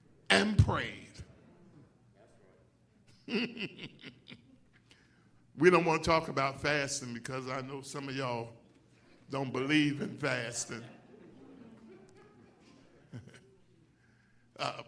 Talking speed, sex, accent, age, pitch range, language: 80 wpm, male, American, 50-69, 120-195 Hz, English